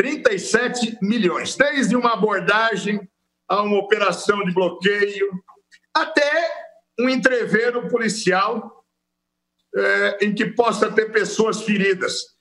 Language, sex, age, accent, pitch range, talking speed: Portuguese, male, 60-79, Brazilian, 185-245 Hz, 95 wpm